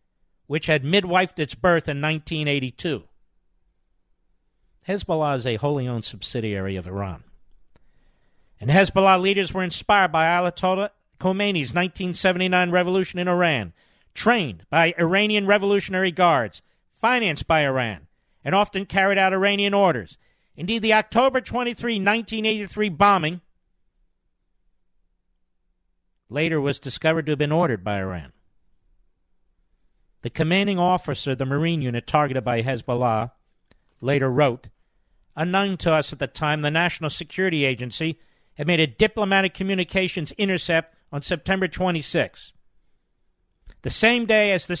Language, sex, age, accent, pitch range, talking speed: English, male, 50-69, American, 135-195 Hz, 125 wpm